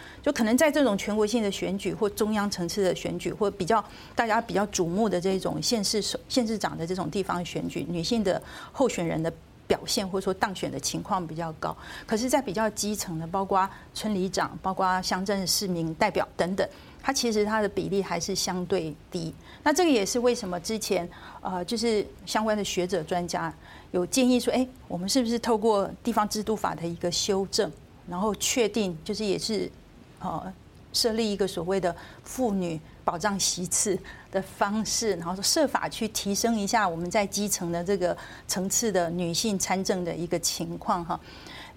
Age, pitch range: 40-59, 180-220 Hz